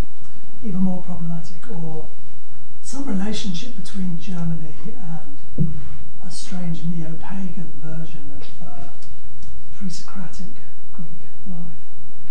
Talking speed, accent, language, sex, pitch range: 90 wpm, British, English, male, 160-205 Hz